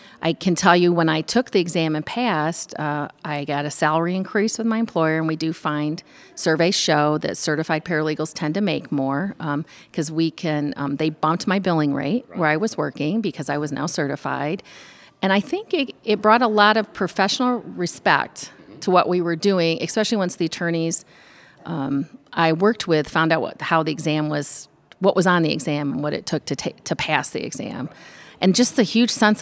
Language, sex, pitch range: English, female, 155-210 Hz